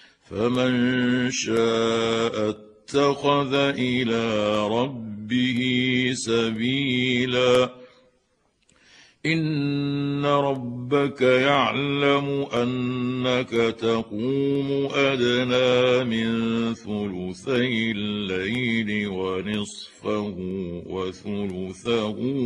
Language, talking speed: Arabic, 45 wpm